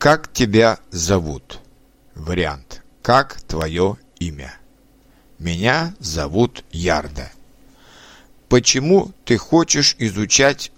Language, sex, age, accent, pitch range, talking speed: Russian, male, 60-79, native, 90-130 Hz, 80 wpm